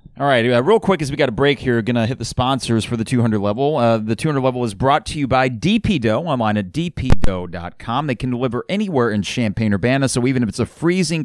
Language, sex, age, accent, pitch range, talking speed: English, male, 30-49, American, 105-140 Hz, 240 wpm